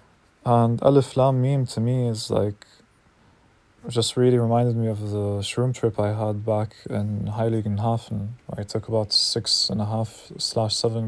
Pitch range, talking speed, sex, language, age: 105-120 Hz, 170 wpm, male, English, 20-39